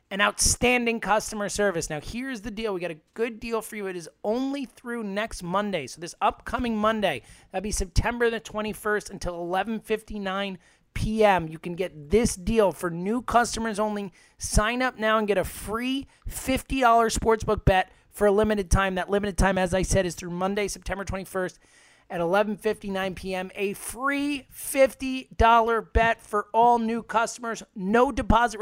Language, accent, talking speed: English, American, 170 wpm